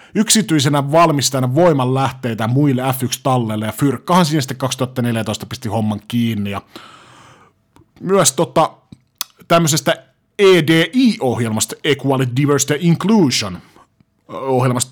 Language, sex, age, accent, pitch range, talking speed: Finnish, male, 30-49, native, 130-170 Hz, 90 wpm